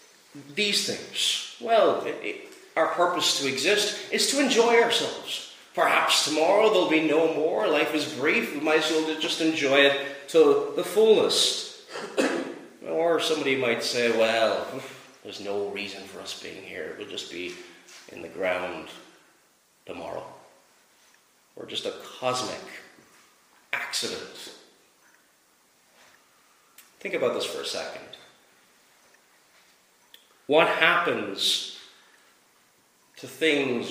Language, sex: English, male